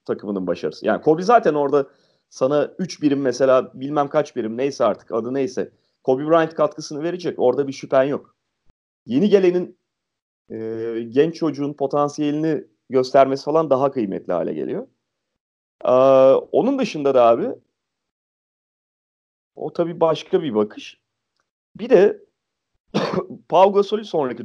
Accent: native